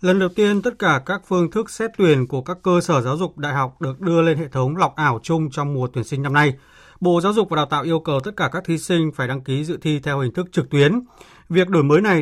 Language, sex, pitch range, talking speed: Vietnamese, male, 125-165 Hz, 290 wpm